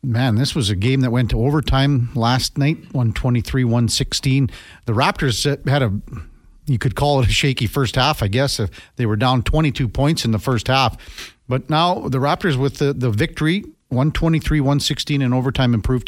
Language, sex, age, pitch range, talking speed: English, male, 50-69, 115-160 Hz, 195 wpm